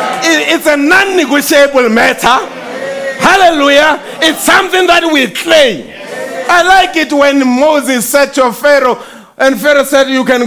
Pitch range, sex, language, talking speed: 265-330 Hz, male, English, 130 wpm